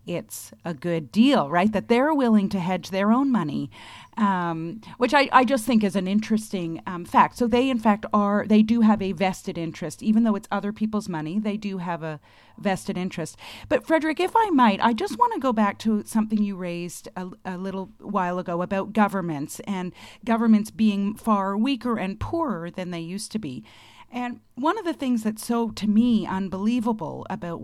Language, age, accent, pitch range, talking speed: English, 40-59, American, 175-235 Hz, 200 wpm